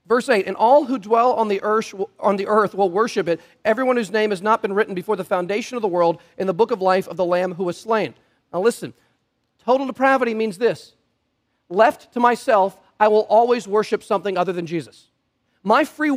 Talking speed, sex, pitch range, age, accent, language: 205 wpm, male, 205-255 Hz, 40-59, American, English